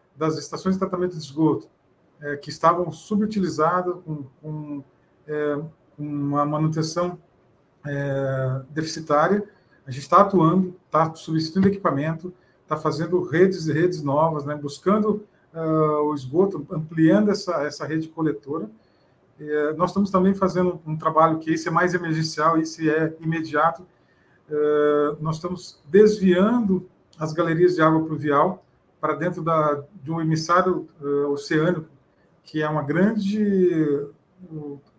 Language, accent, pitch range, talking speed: Portuguese, Brazilian, 150-180 Hz, 130 wpm